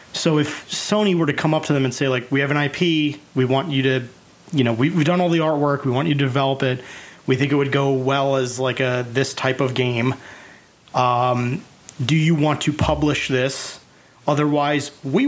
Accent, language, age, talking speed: American, English, 30-49, 220 wpm